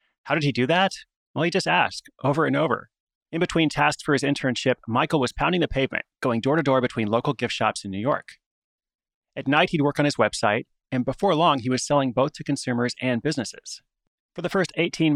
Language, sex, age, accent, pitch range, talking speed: English, male, 30-49, American, 125-160 Hz, 215 wpm